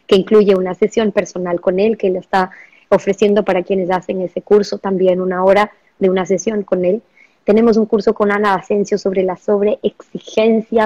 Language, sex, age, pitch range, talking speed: Spanish, male, 20-39, 185-210 Hz, 180 wpm